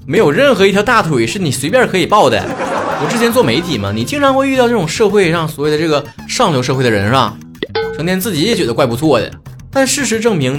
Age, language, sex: 30-49, Chinese, male